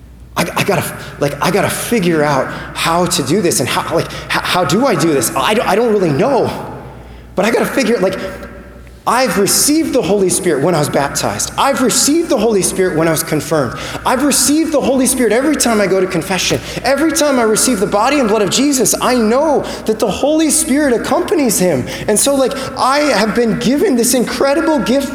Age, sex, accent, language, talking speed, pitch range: 20-39, male, American, English, 215 wpm, 190-280 Hz